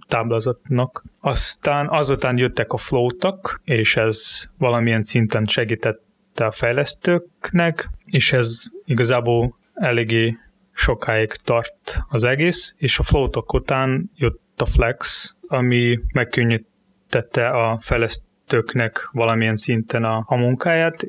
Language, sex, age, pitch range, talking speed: Hungarian, male, 30-49, 115-135 Hz, 105 wpm